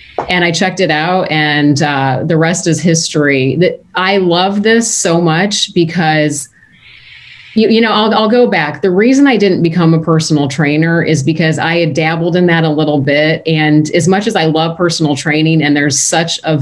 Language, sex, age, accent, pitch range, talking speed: English, female, 30-49, American, 150-180 Hz, 200 wpm